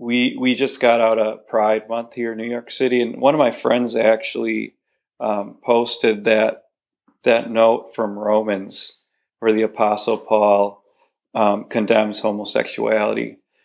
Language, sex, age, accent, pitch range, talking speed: English, male, 40-59, American, 110-125 Hz, 145 wpm